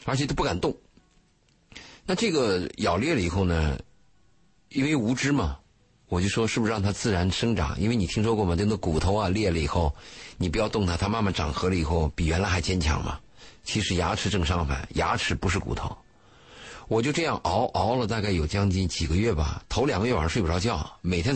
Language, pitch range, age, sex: Chinese, 85-110 Hz, 50-69, male